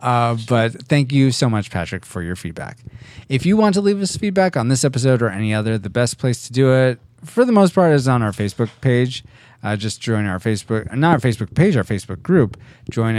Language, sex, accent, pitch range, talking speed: English, male, American, 110-165 Hz, 235 wpm